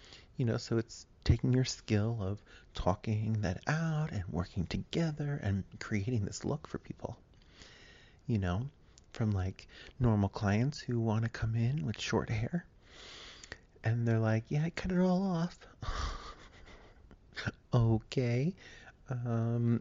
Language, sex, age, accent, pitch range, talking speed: English, male, 30-49, American, 95-125 Hz, 135 wpm